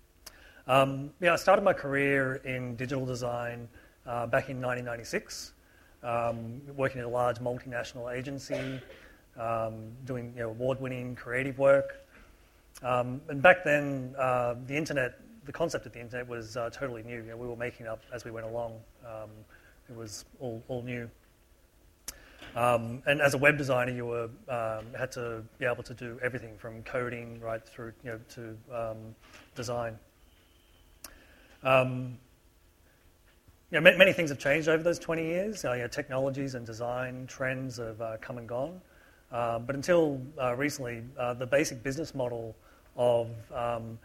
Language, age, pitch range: English, 30-49, 115-130 Hz